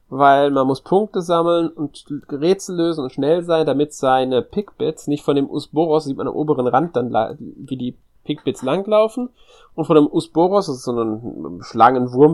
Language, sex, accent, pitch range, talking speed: German, male, German, 125-155 Hz, 180 wpm